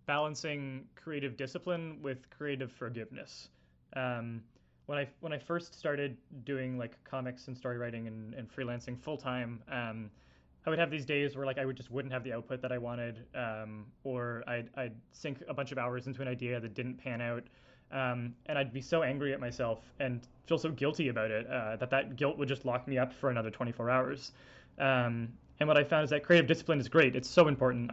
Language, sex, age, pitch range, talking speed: English, male, 20-39, 120-140 Hz, 215 wpm